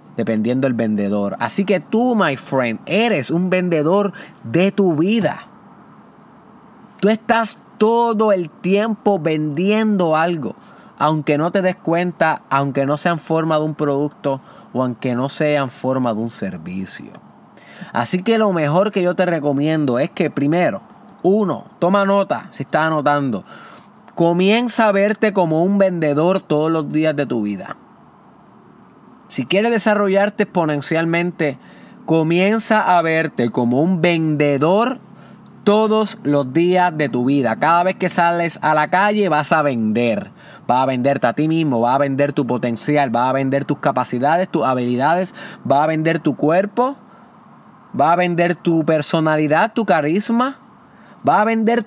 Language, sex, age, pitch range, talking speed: Spanish, male, 30-49, 145-205 Hz, 150 wpm